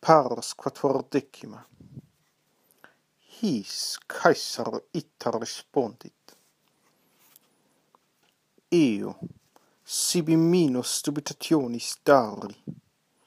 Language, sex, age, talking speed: English, male, 50-69, 50 wpm